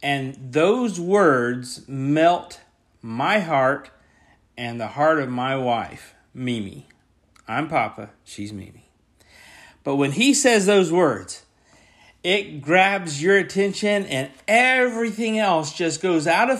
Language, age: English, 40-59